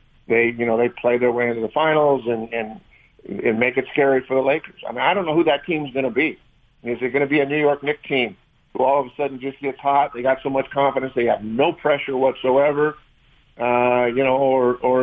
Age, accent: 50-69, American